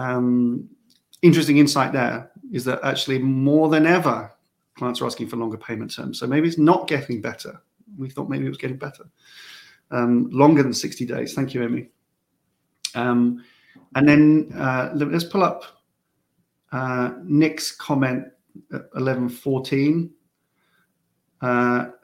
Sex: male